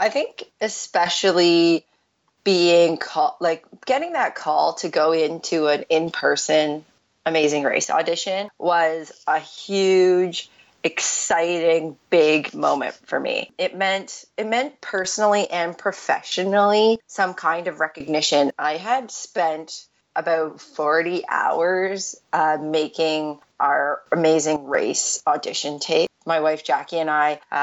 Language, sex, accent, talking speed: English, female, American, 115 wpm